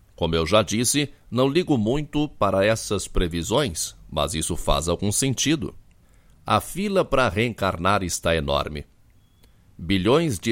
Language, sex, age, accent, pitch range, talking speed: Portuguese, male, 60-79, Brazilian, 90-120 Hz, 130 wpm